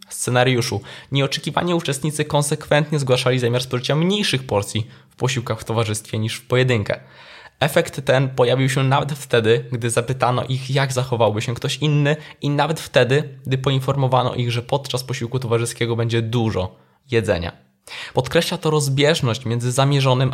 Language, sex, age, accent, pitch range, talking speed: Polish, male, 20-39, native, 115-140 Hz, 140 wpm